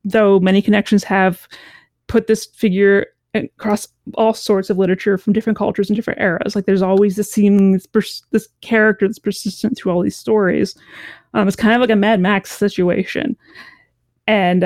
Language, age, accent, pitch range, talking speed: English, 30-49, American, 195-215 Hz, 175 wpm